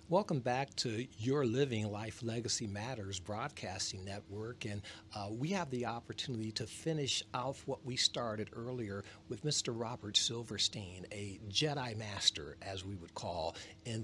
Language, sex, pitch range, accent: English, male, 105-145 Hz, American